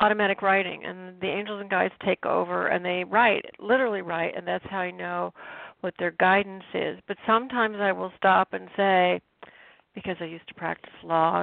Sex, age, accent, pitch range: female, 50-69, American, 180-210 Hz